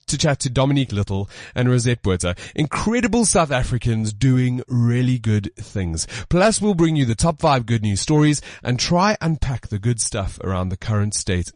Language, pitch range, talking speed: English, 110-160 Hz, 180 wpm